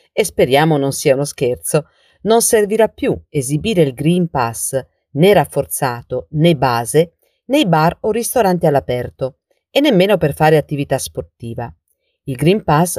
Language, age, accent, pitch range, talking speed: Italian, 40-59, native, 135-190 Hz, 145 wpm